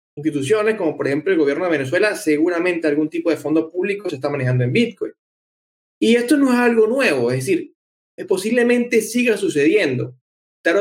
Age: 20-39